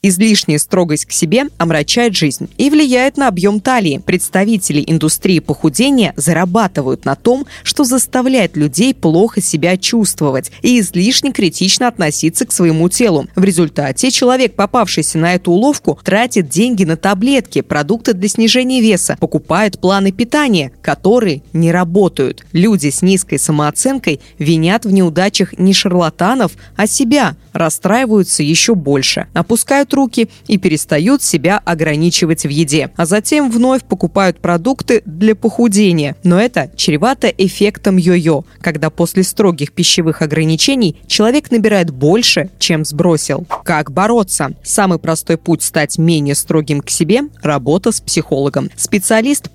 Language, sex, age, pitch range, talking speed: Russian, female, 20-39, 160-225 Hz, 130 wpm